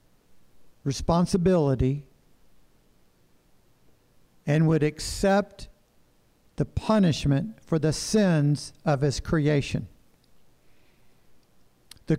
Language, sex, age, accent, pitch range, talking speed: English, male, 60-79, American, 160-200 Hz, 65 wpm